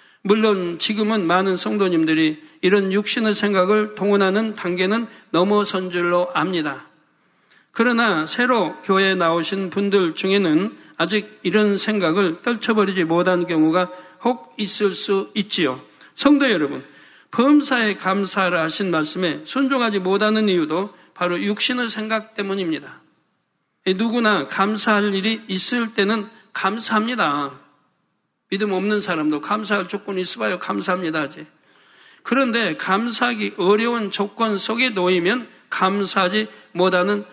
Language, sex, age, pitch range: Korean, male, 60-79, 185-220 Hz